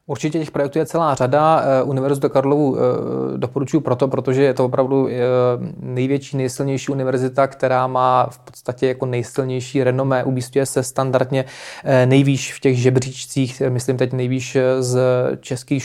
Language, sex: Czech, male